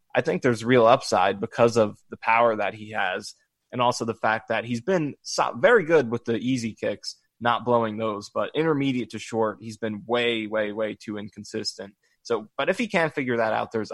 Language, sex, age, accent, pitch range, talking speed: English, male, 20-39, American, 110-125 Hz, 205 wpm